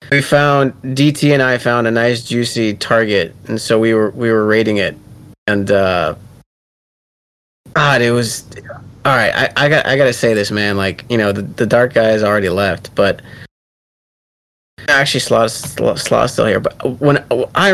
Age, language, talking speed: 30-49, English, 175 wpm